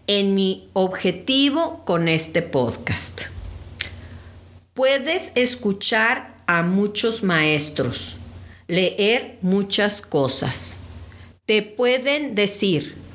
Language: English